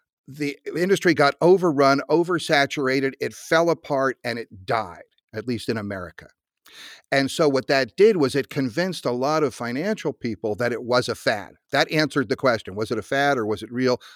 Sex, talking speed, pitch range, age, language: male, 190 wpm, 120-145 Hz, 50-69, English